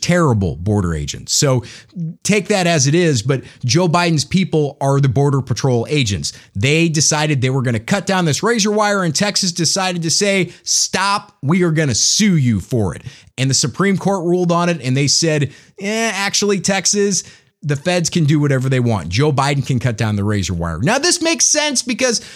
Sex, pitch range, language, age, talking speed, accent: male, 140-205 Hz, English, 30-49, 205 wpm, American